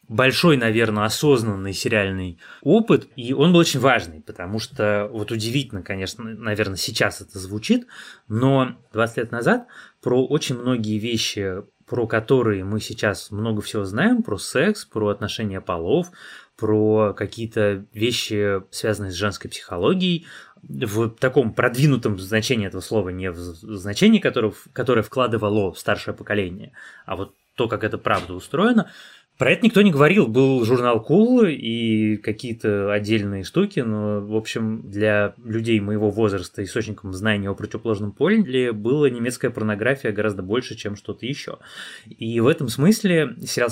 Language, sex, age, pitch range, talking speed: Russian, male, 20-39, 105-130 Hz, 145 wpm